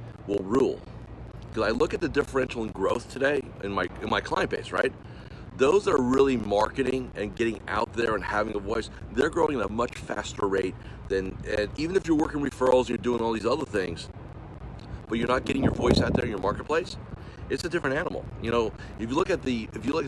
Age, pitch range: 40-59, 105-125 Hz